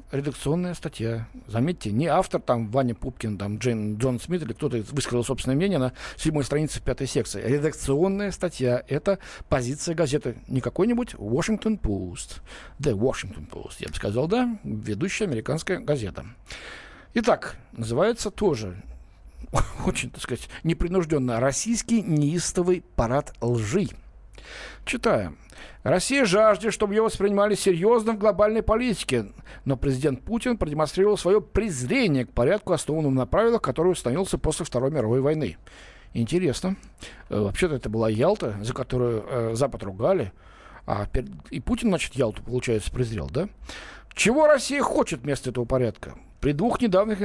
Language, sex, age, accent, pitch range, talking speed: Russian, male, 60-79, native, 125-205 Hz, 135 wpm